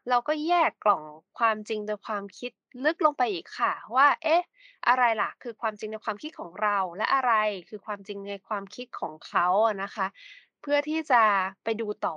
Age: 20-39